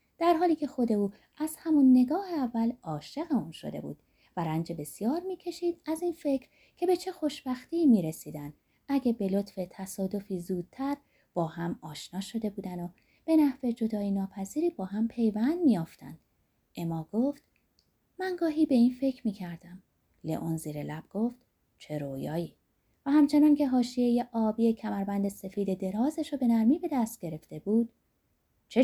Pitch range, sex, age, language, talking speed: 175-280 Hz, female, 30-49, Persian, 155 wpm